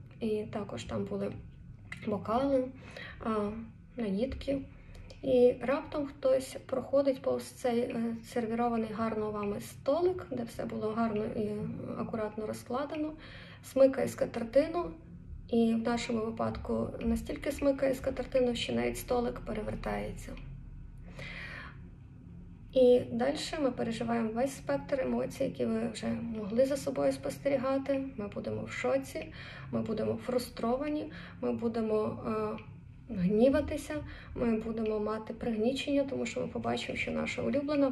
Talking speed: 115 wpm